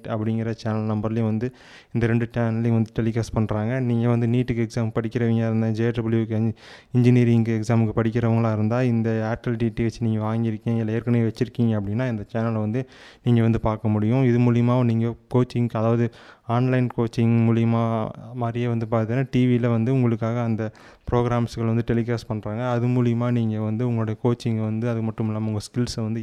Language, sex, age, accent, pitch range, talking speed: Tamil, male, 20-39, native, 110-120 Hz, 160 wpm